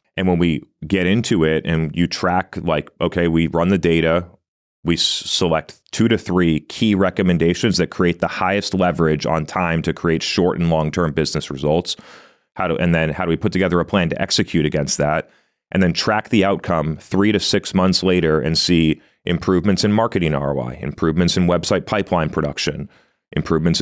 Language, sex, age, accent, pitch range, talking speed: English, male, 30-49, American, 80-90 Hz, 185 wpm